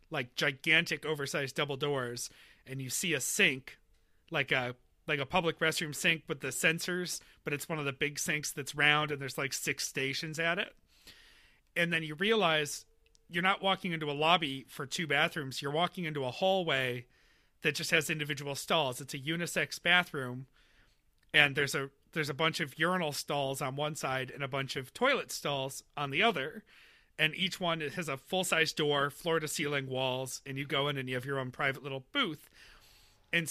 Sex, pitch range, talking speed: male, 140-160 Hz, 190 wpm